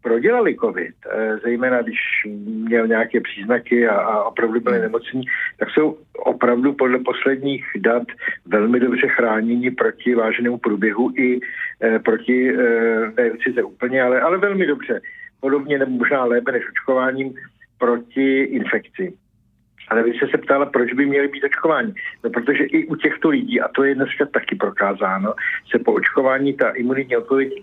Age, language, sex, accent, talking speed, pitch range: 50-69, Czech, male, native, 150 wpm, 115-140 Hz